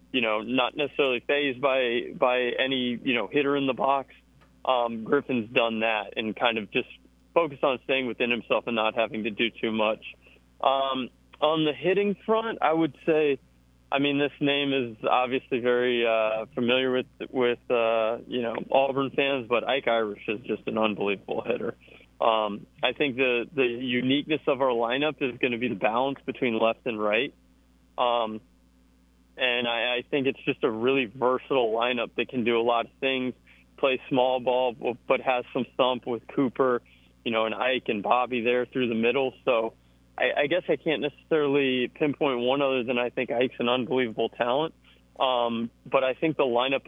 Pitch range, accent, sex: 115-135 Hz, American, male